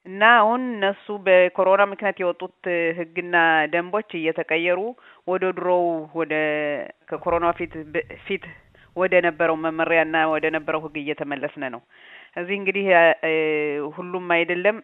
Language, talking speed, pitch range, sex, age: Amharic, 100 wpm, 155-175 Hz, female, 30-49